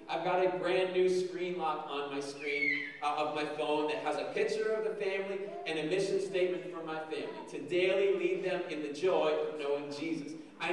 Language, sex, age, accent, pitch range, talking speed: English, male, 40-59, American, 170-230 Hz, 220 wpm